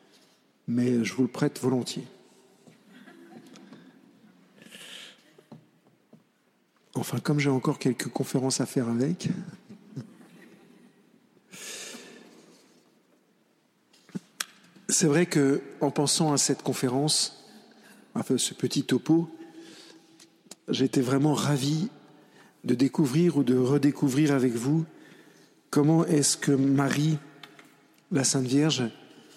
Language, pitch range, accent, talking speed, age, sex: French, 135-165 Hz, French, 90 wpm, 50-69, male